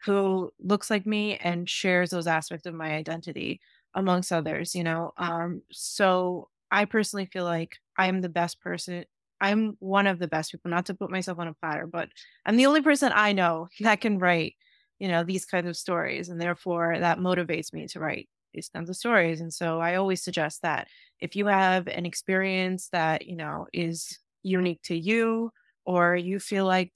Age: 20-39